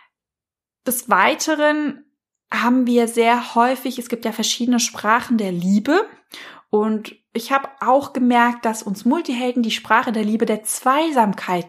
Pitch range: 210-260 Hz